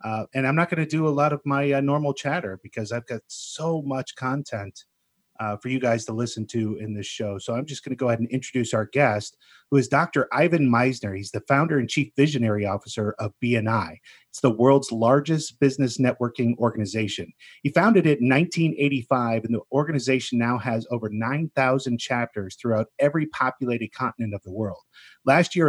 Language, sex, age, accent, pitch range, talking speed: English, male, 30-49, American, 115-150 Hz, 195 wpm